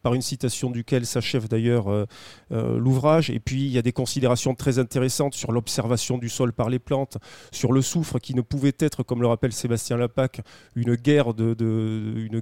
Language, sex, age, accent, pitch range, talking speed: French, male, 30-49, French, 120-140 Hz, 190 wpm